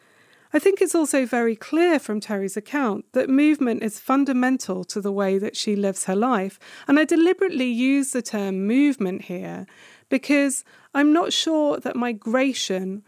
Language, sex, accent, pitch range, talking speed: English, female, British, 195-260 Hz, 160 wpm